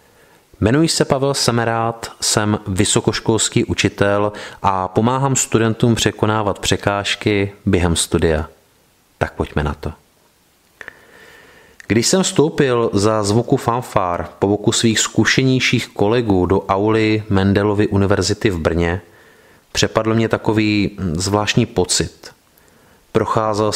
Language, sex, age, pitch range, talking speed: Czech, male, 30-49, 95-120 Hz, 105 wpm